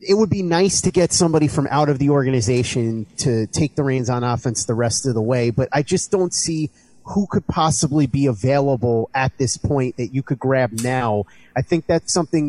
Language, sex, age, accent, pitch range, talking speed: English, male, 30-49, American, 125-155 Hz, 215 wpm